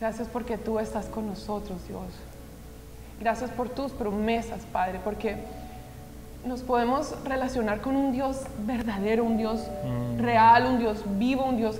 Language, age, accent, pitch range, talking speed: English, 20-39, Colombian, 210-240 Hz, 140 wpm